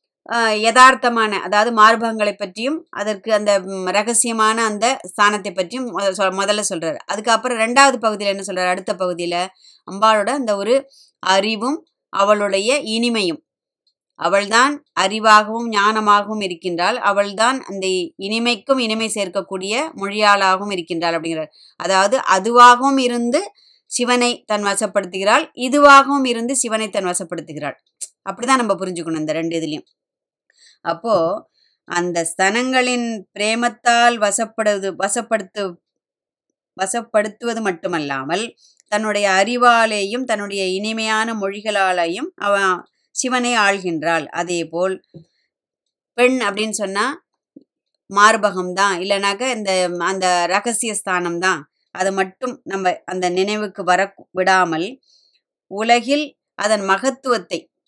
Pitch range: 190-240 Hz